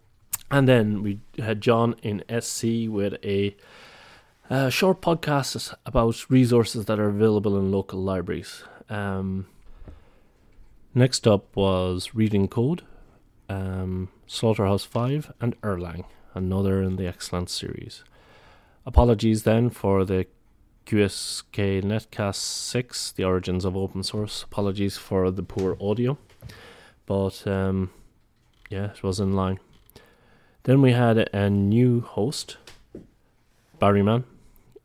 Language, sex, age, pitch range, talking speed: English, male, 30-49, 95-115 Hz, 115 wpm